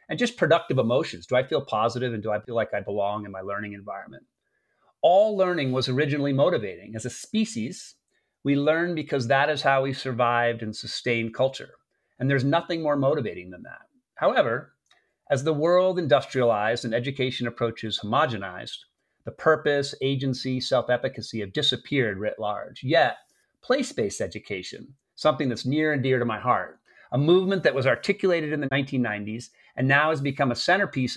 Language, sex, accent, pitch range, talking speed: English, male, American, 120-155 Hz, 170 wpm